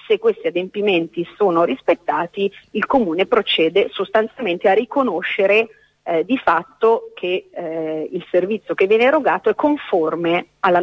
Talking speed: 135 wpm